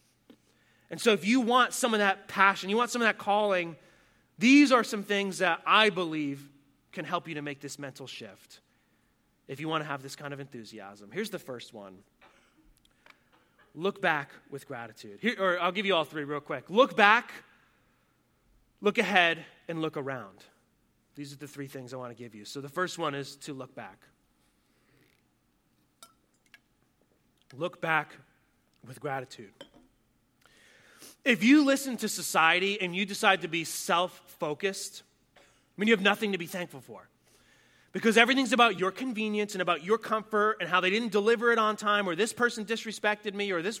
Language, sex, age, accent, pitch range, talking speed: English, male, 30-49, American, 165-230 Hz, 175 wpm